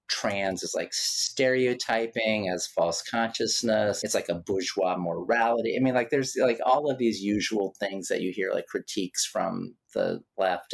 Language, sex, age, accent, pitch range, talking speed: English, male, 40-59, American, 100-115 Hz, 170 wpm